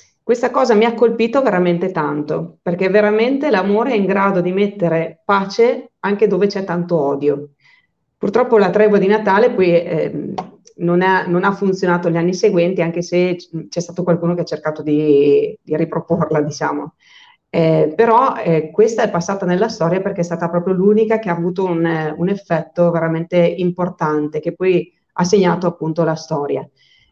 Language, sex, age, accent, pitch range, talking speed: Italian, female, 30-49, native, 165-210 Hz, 165 wpm